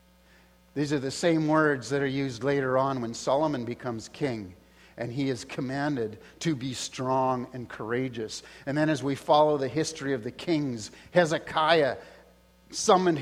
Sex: male